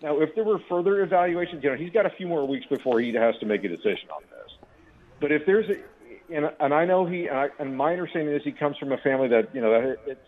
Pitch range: 130-170 Hz